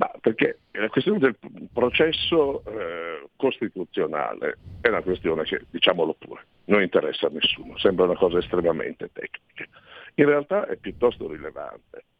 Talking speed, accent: 140 wpm, native